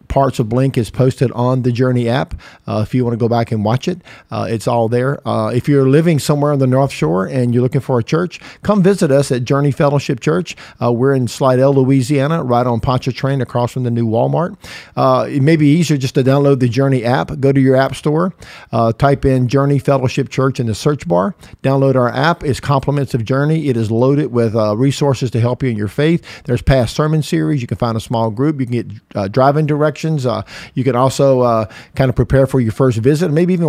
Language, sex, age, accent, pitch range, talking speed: English, male, 50-69, American, 120-145 Hz, 235 wpm